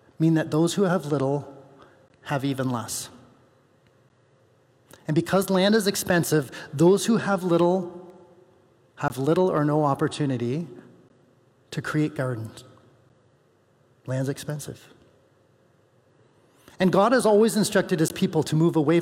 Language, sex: English, male